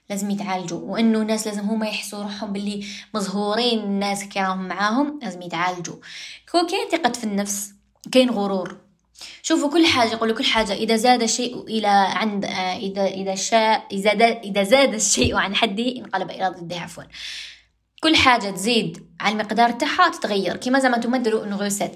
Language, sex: Arabic, female